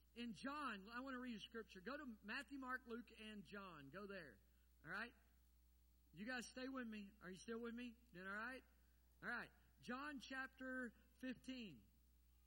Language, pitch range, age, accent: English, 170-265 Hz, 50-69, American